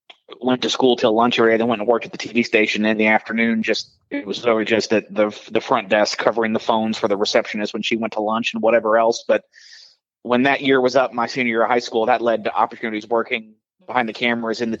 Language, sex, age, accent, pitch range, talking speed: English, male, 20-39, American, 110-120 Hz, 255 wpm